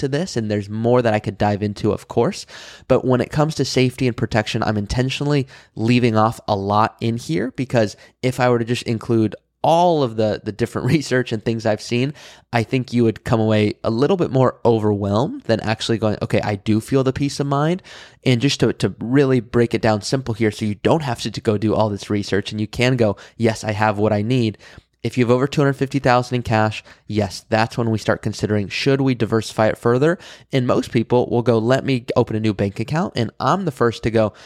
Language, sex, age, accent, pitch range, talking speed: English, male, 20-39, American, 110-130 Hz, 230 wpm